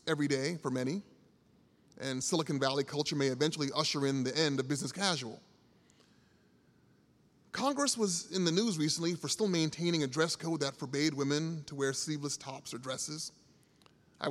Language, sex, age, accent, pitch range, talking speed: English, male, 30-49, American, 135-160 Hz, 165 wpm